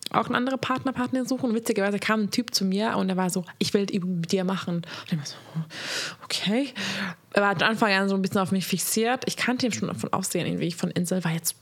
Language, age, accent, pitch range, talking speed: German, 20-39, German, 190-230 Hz, 250 wpm